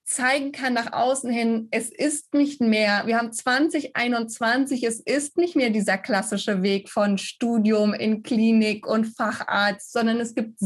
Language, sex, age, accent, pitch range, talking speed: German, female, 20-39, German, 215-255 Hz, 160 wpm